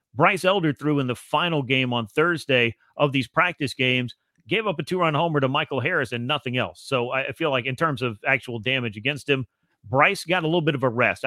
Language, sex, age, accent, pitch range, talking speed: English, male, 40-59, American, 130-155 Hz, 230 wpm